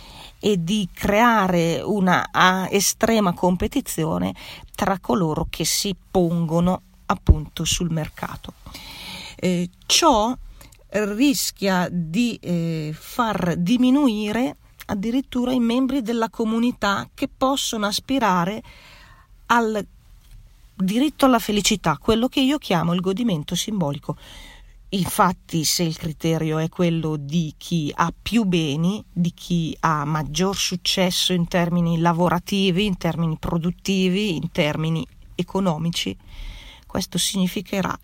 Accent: native